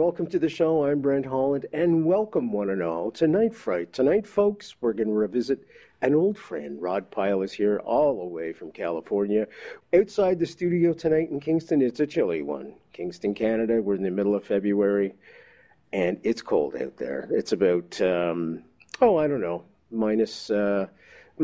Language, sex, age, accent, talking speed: English, male, 50-69, American, 180 wpm